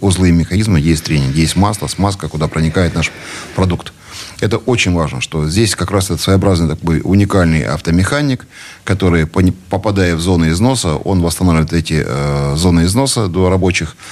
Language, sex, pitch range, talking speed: Russian, male, 80-95 Hz, 155 wpm